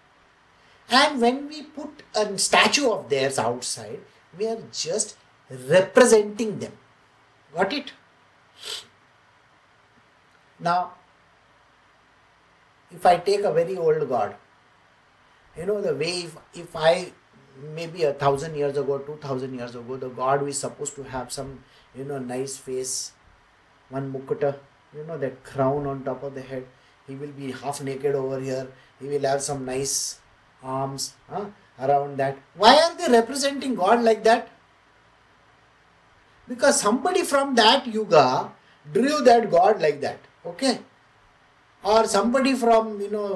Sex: male